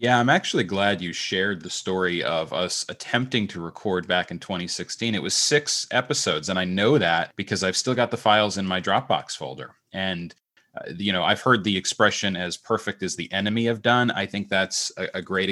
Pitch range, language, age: 95-115 Hz, English, 30-49